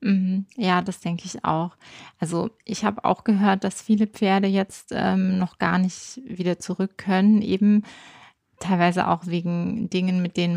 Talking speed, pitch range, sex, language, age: 160 wpm, 170-190 Hz, female, German, 20-39